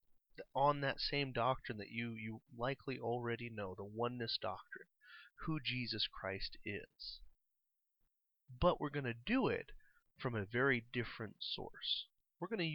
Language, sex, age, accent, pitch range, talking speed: English, male, 30-49, American, 105-130 Hz, 145 wpm